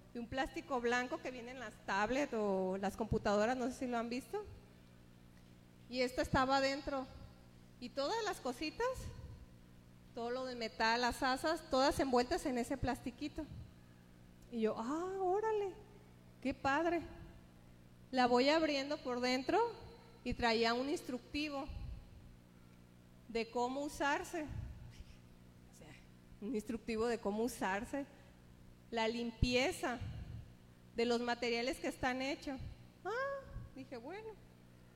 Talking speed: 120 wpm